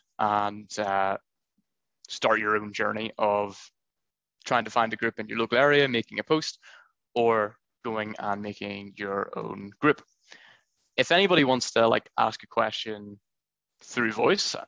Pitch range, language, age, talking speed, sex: 105-120 Hz, English, 20-39, 145 wpm, male